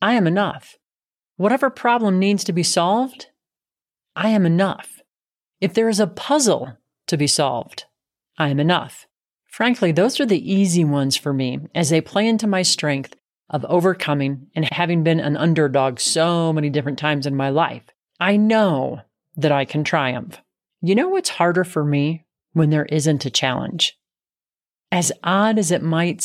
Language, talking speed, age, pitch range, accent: English, 165 wpm, 40-59, 150-195 Hz, American